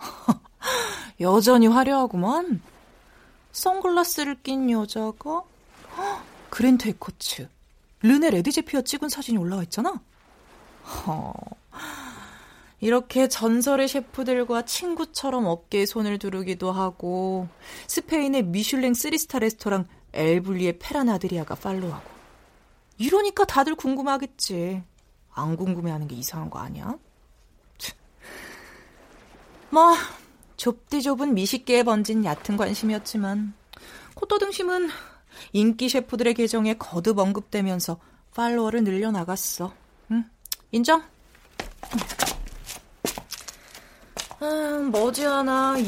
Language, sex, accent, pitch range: Korean, female, native, 200-275 Hz